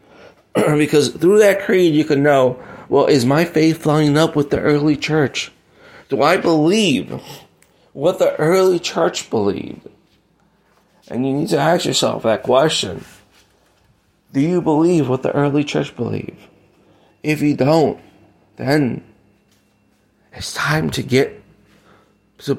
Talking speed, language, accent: 135 wpm, English, American